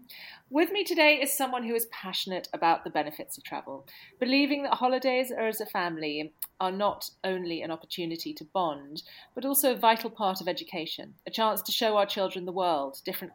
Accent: British